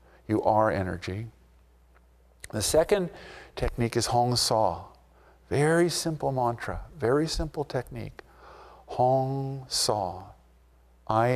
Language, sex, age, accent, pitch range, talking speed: English, male, 50-69, American, 95-130 Hz, 95 wpm